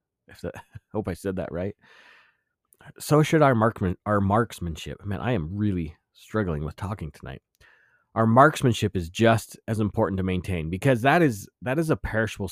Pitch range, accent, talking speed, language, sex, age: 95-120 Hz, American, 175 wpm, English, male, 30-49